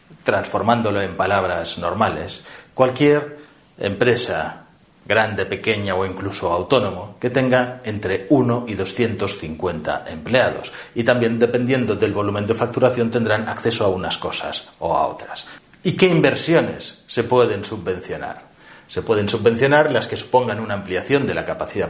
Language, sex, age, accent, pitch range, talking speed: Spanish, male, 40-59, Spanish, 105-135 Hz, 135 wpm